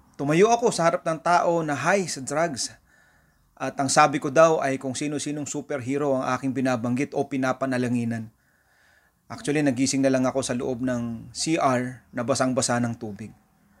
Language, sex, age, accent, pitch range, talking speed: English, male, 20-39, Filipino, 120-150 Hz, 160 wpm